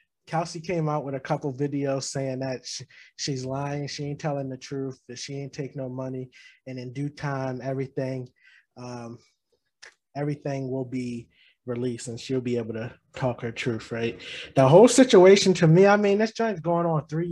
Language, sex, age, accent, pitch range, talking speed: English, male, 20-39, American, 130-170 Hz, 185 wpm